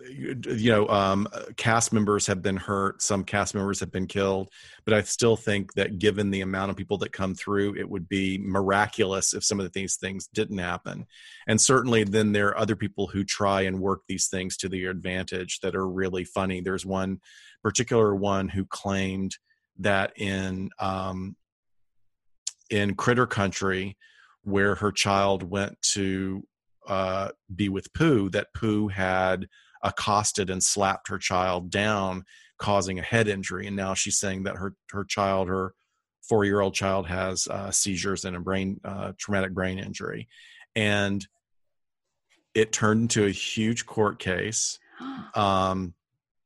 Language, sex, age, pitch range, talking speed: English, male, 40-59, 95-105 Hz, 160 wpm